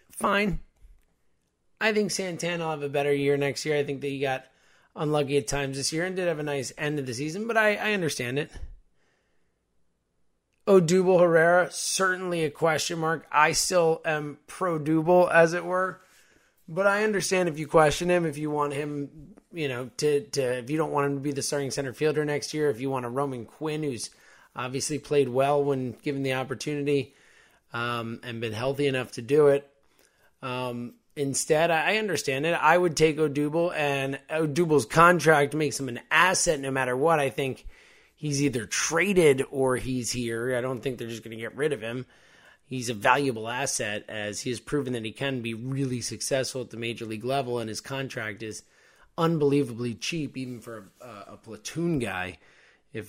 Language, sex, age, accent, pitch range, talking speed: English, male, 20-39, American, 125-160 Hz, 190 wpm